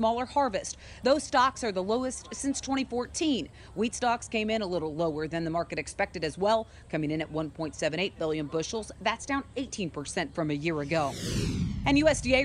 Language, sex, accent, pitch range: English, female, American, 190-240 Hz